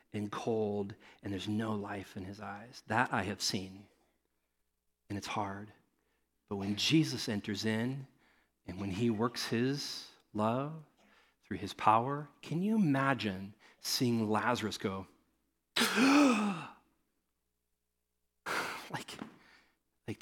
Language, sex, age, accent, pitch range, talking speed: English, male, 40-59, American, 105-175 Hz, 115 wpm